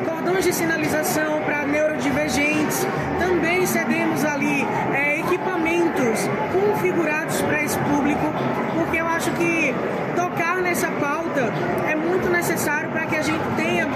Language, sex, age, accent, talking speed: Portuguese, female, 20-39, Brazilian, 115 wpm